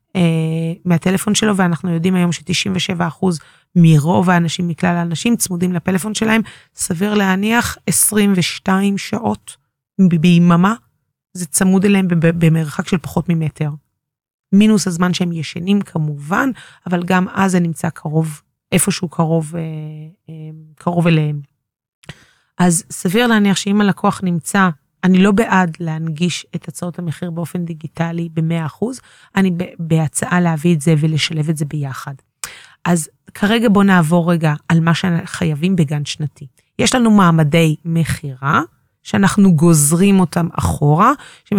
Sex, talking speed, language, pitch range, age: female, 125 wpm, Hebrew, 160-190 Hz, 30-49